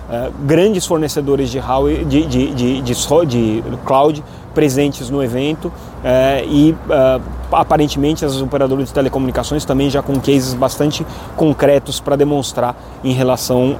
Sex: male